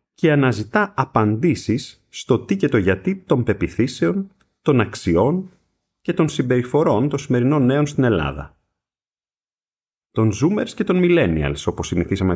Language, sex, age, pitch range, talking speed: Greek, male, 30-49, 95-155 Hz, 130 wpm